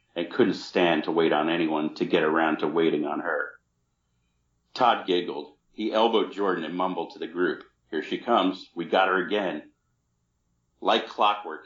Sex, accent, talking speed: male, American, 170 wpm